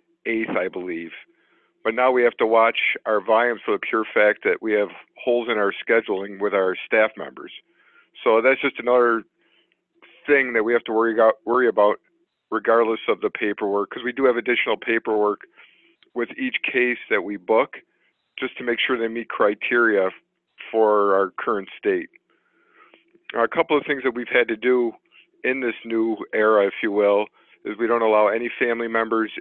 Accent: American